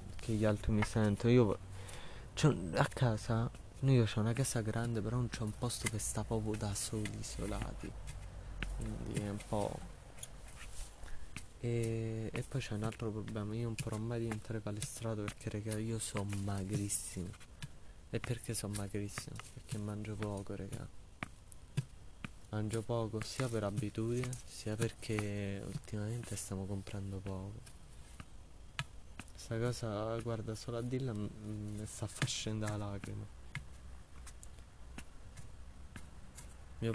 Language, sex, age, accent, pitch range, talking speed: Italian, male, 20-39, native, 95-115 Hz, 125 wpm